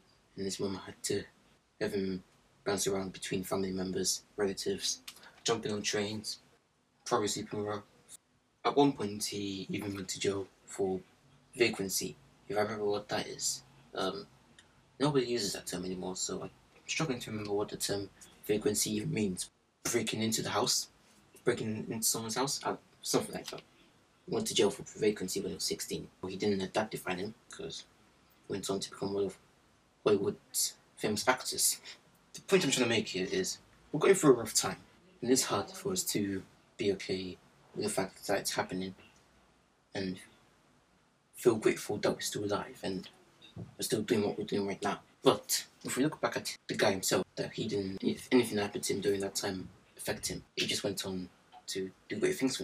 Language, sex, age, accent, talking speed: English, male, 20-39, British, 190 wpm